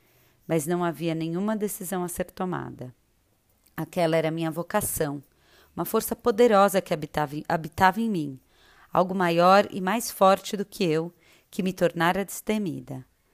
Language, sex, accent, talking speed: Portuguese, female, Brazilian, 145 wpm